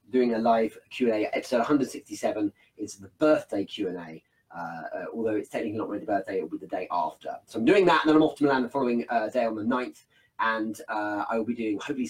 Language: English